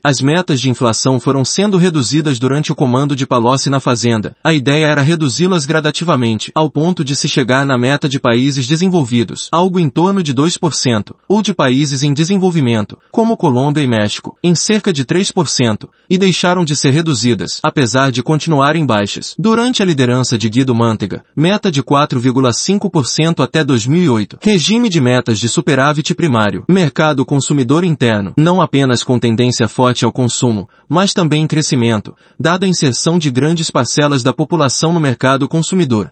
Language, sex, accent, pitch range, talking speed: Portuguese, male, Brazilian, 125-165 Hz, 165 wpm